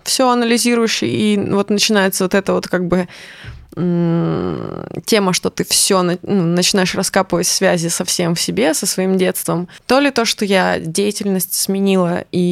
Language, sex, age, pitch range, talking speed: Russian, female, 20-39, 170-205 Hz, 155 wpm